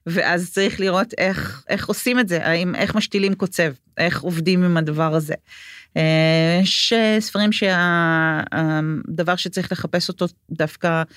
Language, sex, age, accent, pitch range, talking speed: Hebrew, female, 40-59, native, 155-180 Hz, 125 wpm